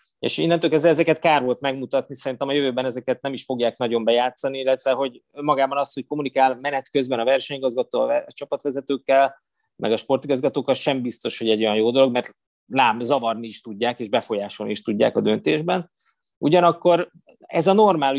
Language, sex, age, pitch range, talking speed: Hungarian, male, 20-39, 115-145 Hz, 170 wpm